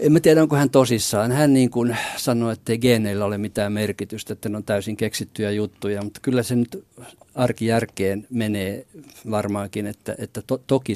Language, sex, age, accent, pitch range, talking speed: Finnish, male, 60-79, native, 110-130 Hz, 170 wpm